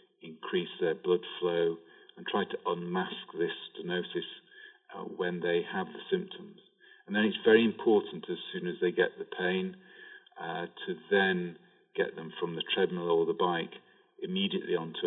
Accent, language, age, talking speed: British, English, 40-59, 165 wpm